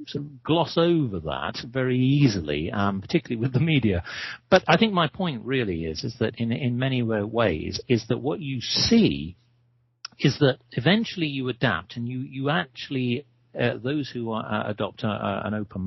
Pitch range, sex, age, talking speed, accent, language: 105-140 Hz, male, 50-69, 185 wpm, British, English